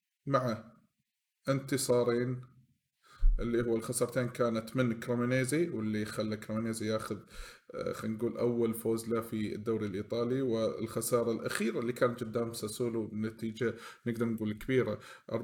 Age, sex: 20-39, male